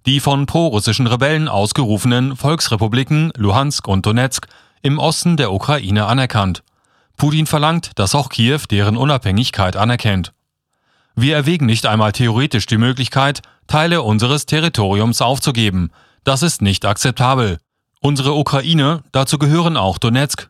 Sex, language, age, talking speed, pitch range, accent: male, German, 30-49, 125 wpm, 110-145 Hz, German